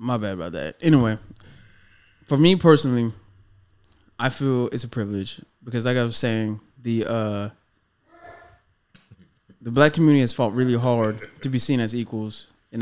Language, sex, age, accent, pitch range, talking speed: English, male, 20-39, American, 105-130 Hz, 155 wpm